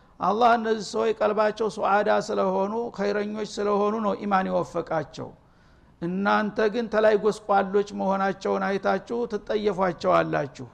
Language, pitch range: Amharic, 175-210 Hz